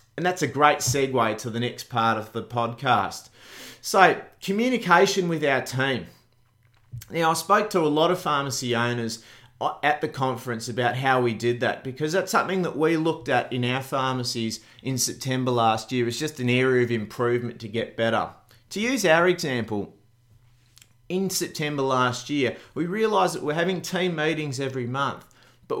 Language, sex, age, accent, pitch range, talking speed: English, male, 30-49, Australian, 120-150 Hz, 175 wpm